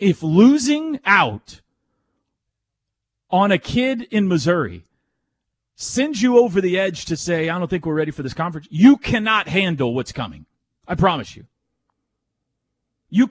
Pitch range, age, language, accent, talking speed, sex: 130-210 Hz, 40-59, English, American, 145 wpm, male